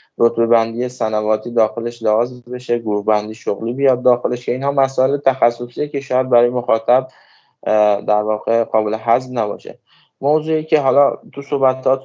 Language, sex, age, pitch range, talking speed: Persian, male, 20-39, 115-130 Hz, 145 wpm